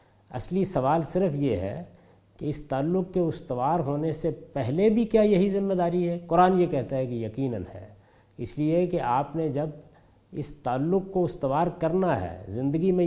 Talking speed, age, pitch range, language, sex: 185 wpm, 50-69, 115-160 Hz, Urdu, male